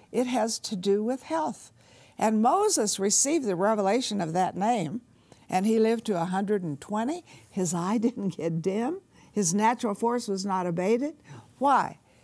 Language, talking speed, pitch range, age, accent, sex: English, 150 wpm, 185-255 Hz, 60-79, American, female